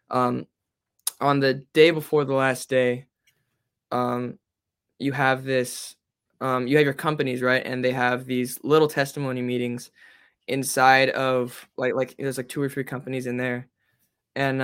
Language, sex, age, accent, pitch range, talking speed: English, male, 10-29, American, 125-140 Hz, 155 wpm